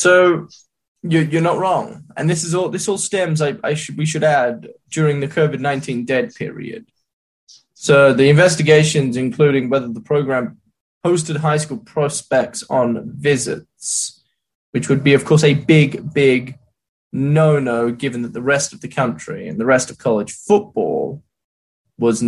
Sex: male